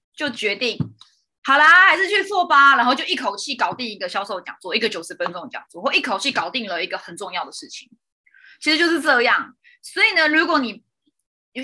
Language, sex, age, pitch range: Chinese, female, 20-39, 215-320 Hz